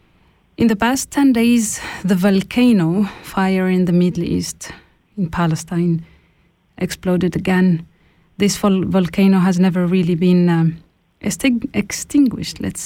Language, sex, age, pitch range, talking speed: German, female, 30-49, 175-200 Hz, 115 wpm